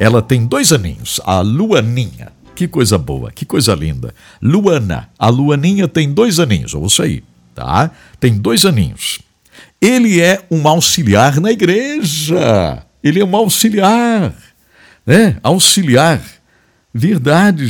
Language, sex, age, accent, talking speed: English, male, 60-79, Brazilian, 130 wpm